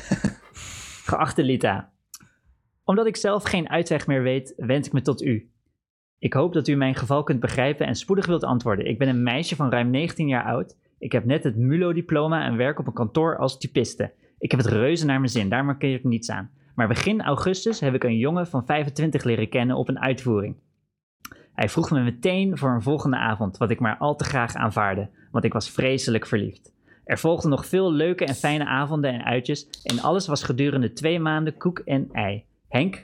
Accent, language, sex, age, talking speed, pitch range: Dutch, Dutch, male, 20-39, 205 wpm, 120-155 Hz